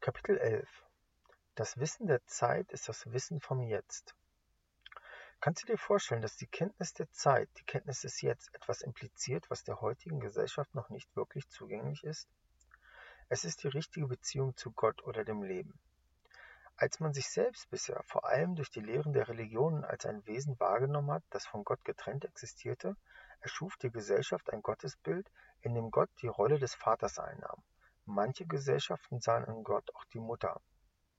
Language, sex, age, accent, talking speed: English, male, 40-59, German, 170 wpm